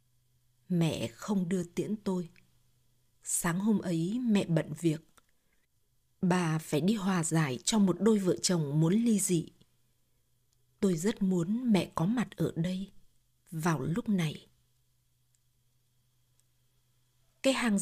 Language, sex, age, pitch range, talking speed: Vietnamese, female, 20-39, 150-210 Hz, 125 wpm